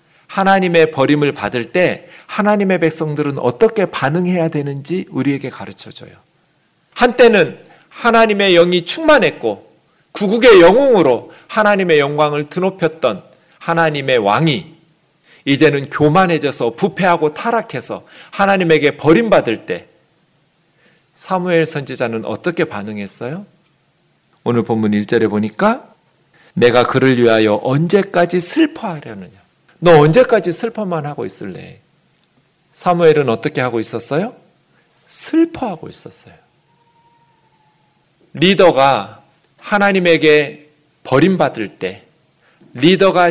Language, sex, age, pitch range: Korean, male, 40-59, 135-180 Hz